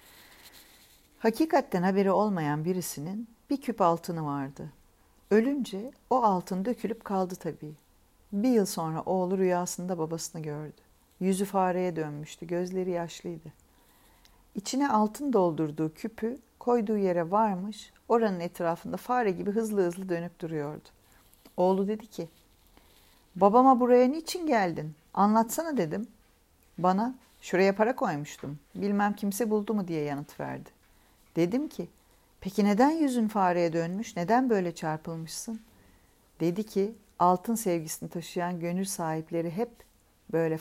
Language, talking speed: Turkish, 120 wpm